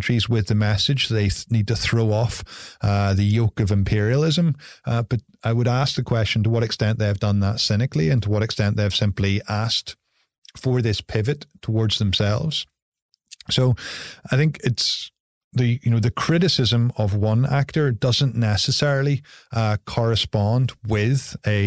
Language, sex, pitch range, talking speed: English, male, 105-125 Hz, 165 wpm